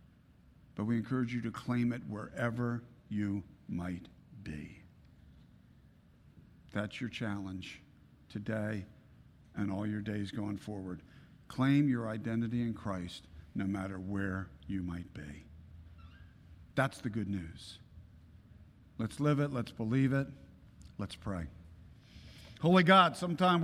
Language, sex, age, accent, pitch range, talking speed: English, male, 50-69, American, 95-130 Hz, 120 wpm